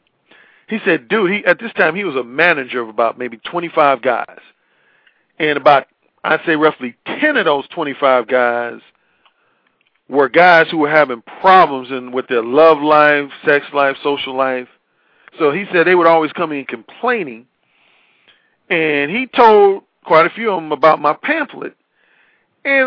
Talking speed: 155 wpm